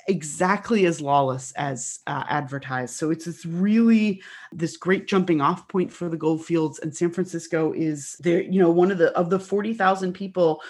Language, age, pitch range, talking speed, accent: English, 30-49, 160-195 Hz, 185 wpm, American